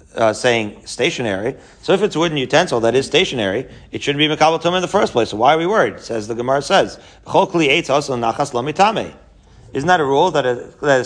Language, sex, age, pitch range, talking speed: English, male, 40-59, 135-185 Hz, 200 wpm